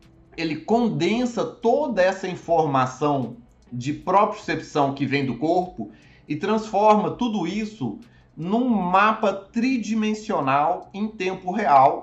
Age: 30-49